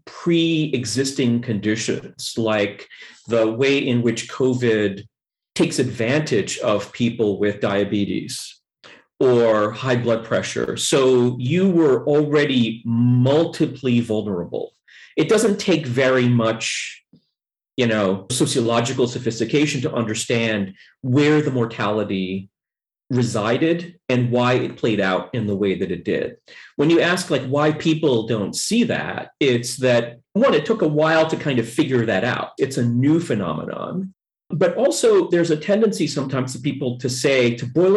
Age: 40-59